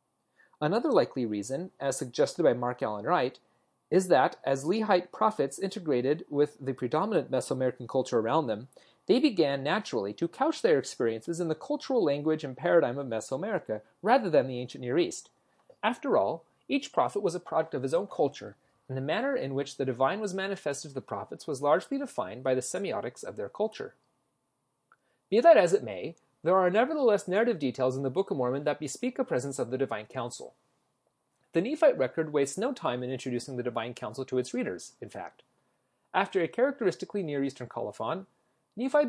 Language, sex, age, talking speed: English, male, 30-49, 185 wpm